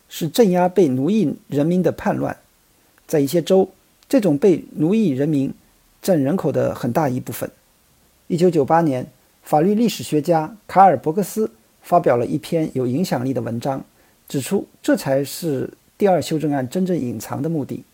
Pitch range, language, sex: 145-195 Hz, Chinese, male